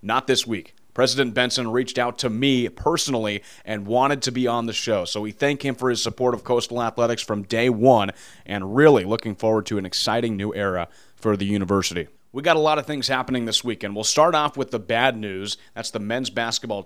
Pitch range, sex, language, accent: 110-130 Hz, male, English, American